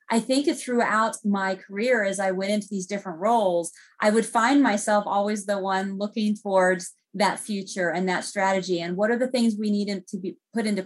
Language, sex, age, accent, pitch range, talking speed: English, female, 30-49, American, 185-225 Hz, 205 wpm